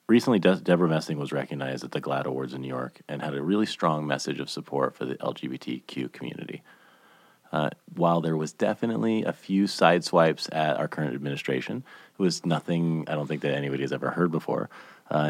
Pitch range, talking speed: 75-90 Hz, 195 wpm